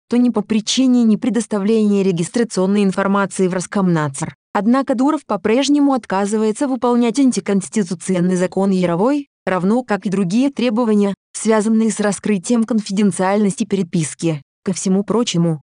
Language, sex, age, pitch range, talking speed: Russian, female, 20-39, 195-240 Hz, 120 wpm